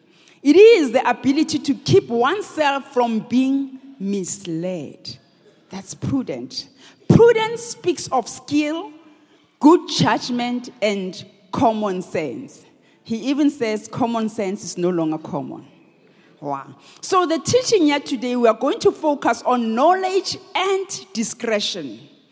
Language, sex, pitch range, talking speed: English, female, 230-320 Hz, 120 wpm